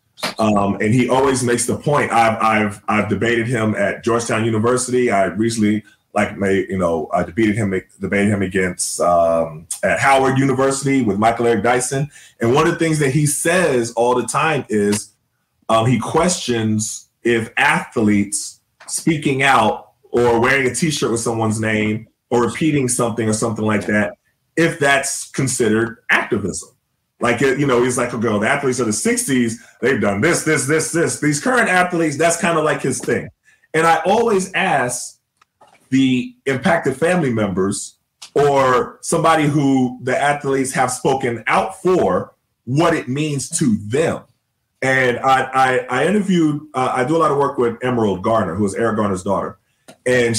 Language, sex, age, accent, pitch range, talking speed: English, male, 30-49, American, 110-140 Hz, 170 wpm